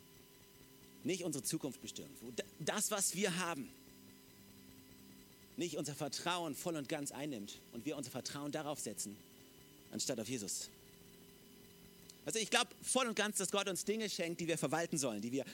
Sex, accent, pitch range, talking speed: male, German, 135-195 Hz, 160 wpm